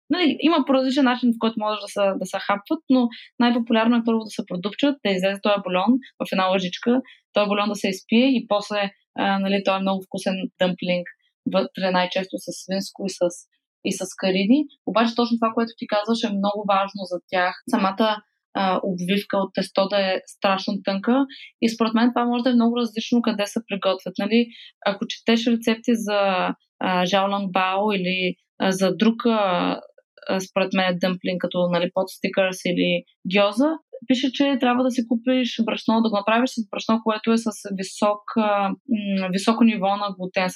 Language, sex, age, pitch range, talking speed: Bulgarian, female, 20-39, 195-250 Hz, 180 wpm